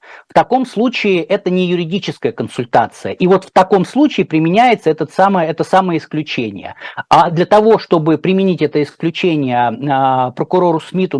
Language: Russian